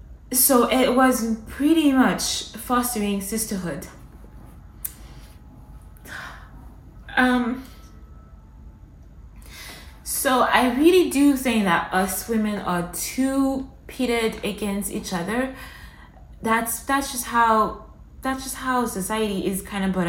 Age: 20-39